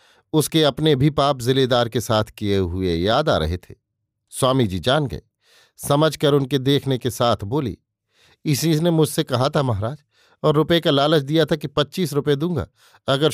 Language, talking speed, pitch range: Hindi, 185 wpm, 120-155 Hz